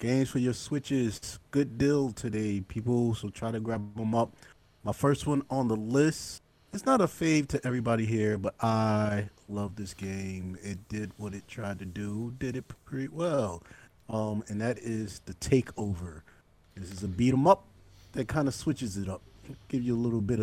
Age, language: 30-49, English